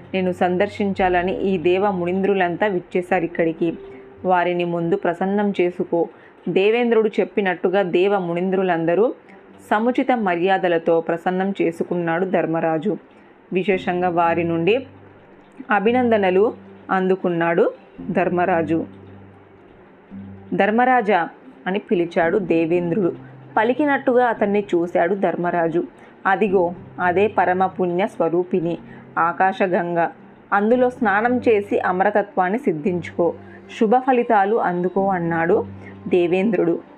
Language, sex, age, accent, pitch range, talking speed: Telugu, female, 20-39, native, 175-210 Hz, 80 wpm